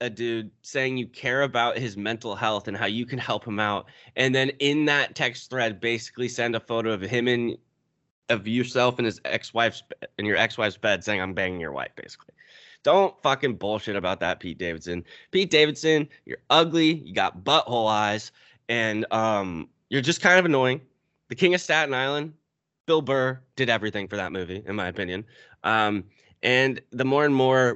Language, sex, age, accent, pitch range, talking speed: English, male, 20-39, American, 110-135 Hz, 190 wpm